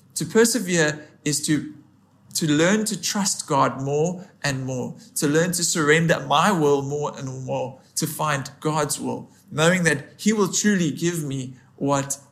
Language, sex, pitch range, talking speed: English, male, 140-175 Hz, 160 wpm